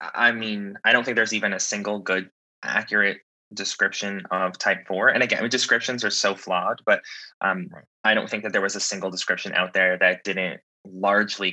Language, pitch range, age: English, 90-100 Hz, 20-39